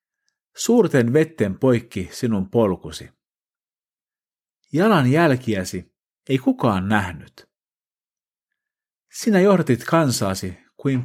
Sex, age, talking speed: male, 50-69, 75 wpm